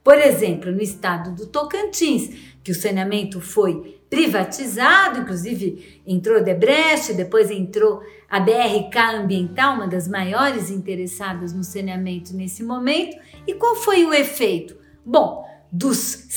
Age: 40-59